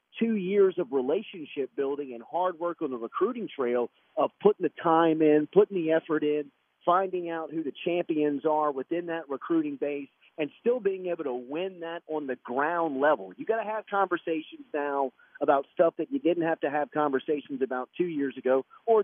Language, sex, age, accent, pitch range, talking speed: English, male, 40-59, American, 140-180 Hz, 195 wpm